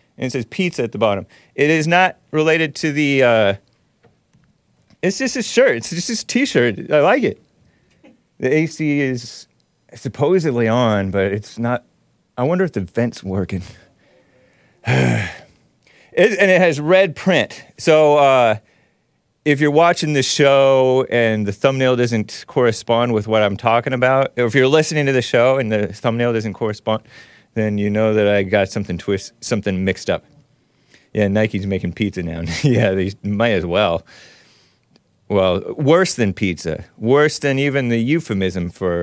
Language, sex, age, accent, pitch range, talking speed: English, male, 30-49, American, 100-150 Hz, 160 wpm